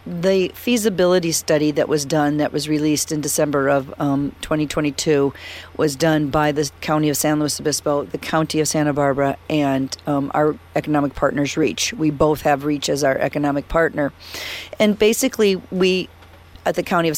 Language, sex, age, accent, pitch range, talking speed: English, female, 40-59, American, 150-200 Hz, 170 wpm